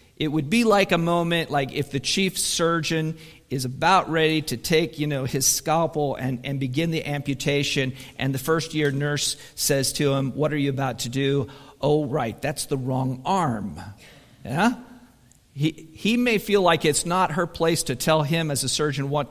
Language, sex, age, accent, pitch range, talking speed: English, male, 50-69, American, 135-160 Hz, 195 wpm